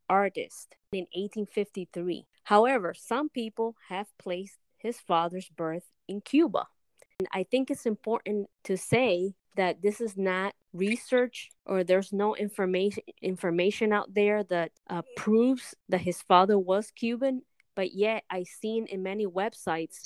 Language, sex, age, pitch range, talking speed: English, female, 20-39, 180-210 Hz, 140 wpm